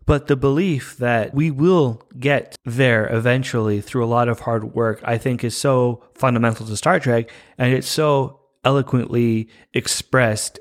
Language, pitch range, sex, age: English, 115-140 Hz, male, 30-49